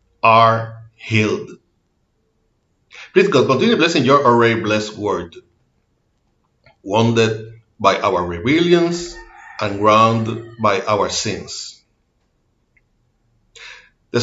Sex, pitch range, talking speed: male, 110-160 Hz, 85 wpm